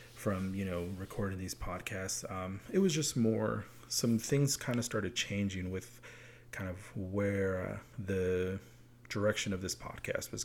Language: English